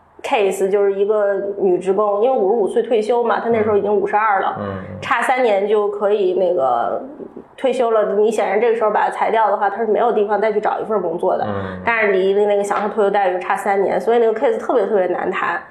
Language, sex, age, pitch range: Chinese, female, 20-39, 205-305 Hz